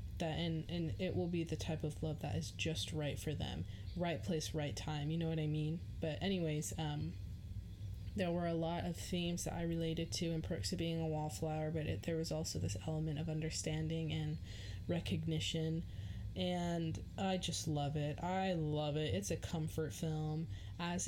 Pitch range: 100-170 Hz